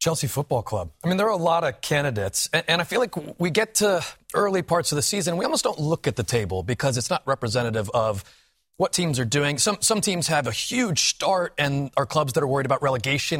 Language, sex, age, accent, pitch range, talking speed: English, male, 30-49, American, 120-180 Hz, 240 wpm